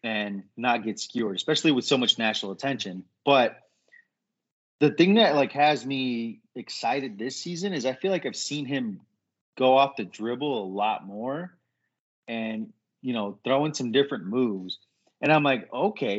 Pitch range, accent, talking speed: 115-150 Hz, American, 170 wpm